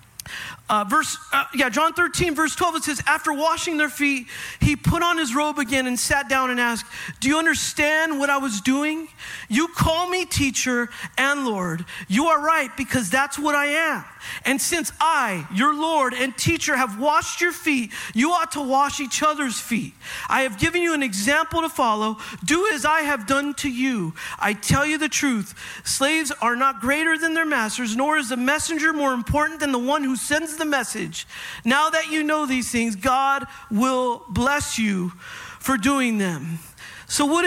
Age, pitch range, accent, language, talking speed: 40-59, 240-315 Hz, American, English, 195 wpm